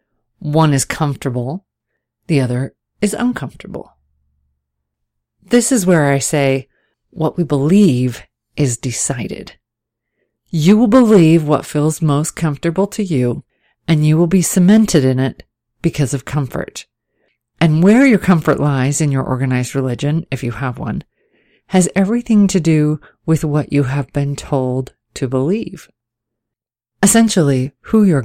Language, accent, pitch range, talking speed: English, American, 125-170 Hz, 135 wpm